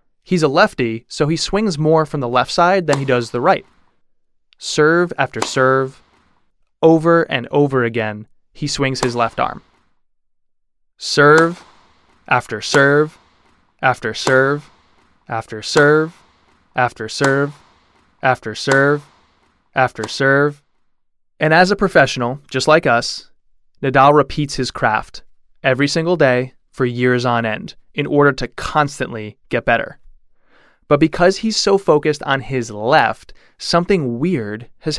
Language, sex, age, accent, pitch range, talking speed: English, male, 20-39, American, 125-155 Hz, 130 wpm